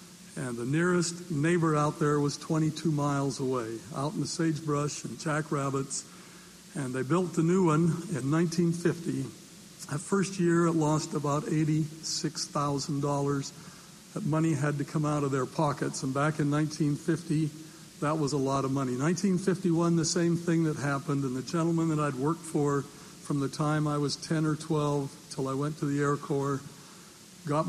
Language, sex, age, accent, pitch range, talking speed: English, male, 60-79, American, 145-170 Hz, 170 wpm